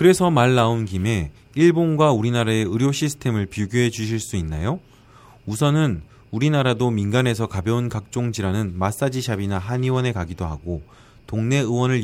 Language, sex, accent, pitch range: Korean, male, native, 100-130 Hz